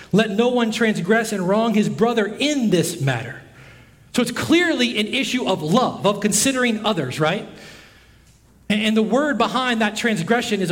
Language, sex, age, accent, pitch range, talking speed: English, male, 40-59, American, 135-195 Hz, 160 wpm